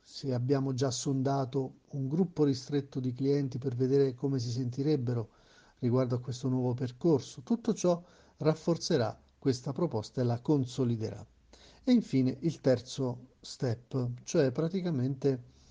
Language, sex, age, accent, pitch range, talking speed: Italian, male, 50-69, native, 125-150 Hz, 130 wpm